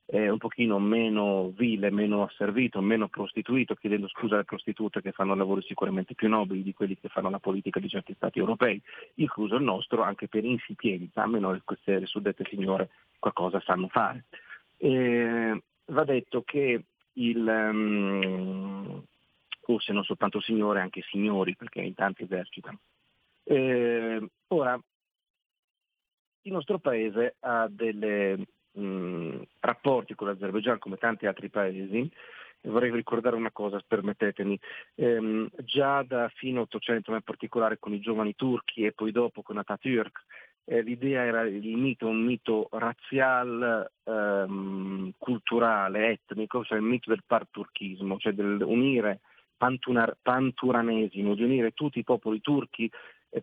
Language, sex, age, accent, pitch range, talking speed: Italian, male, 40-59, native, 100-120 Hz, 135 wpm